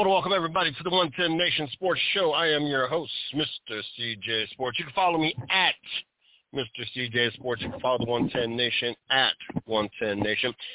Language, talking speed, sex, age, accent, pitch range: English, 180 wpm, male, 50-69, American, 105-140 Hz